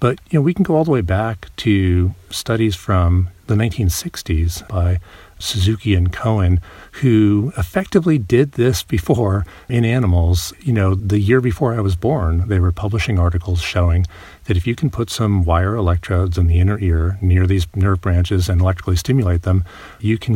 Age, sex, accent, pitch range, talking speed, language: 40-59, male, American, 90-110 Hz, 180 wpm, English